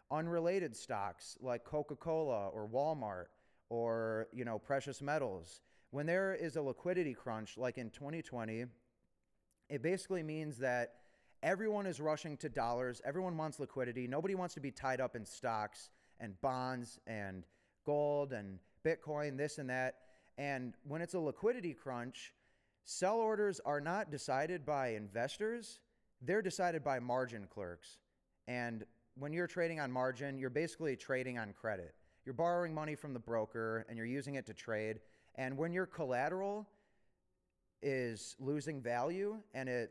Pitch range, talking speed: 115-155 Hz, 150 wpm